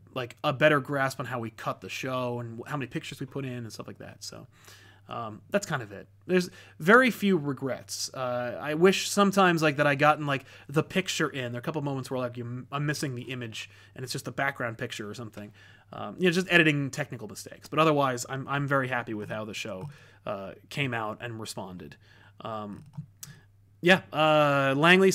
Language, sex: English, male